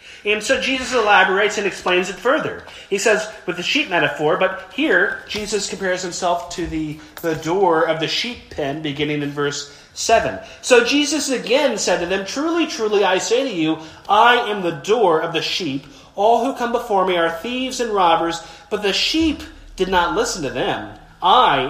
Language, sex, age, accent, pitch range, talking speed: English, male, 30-49, American, 140-200 Hz, 190 wpm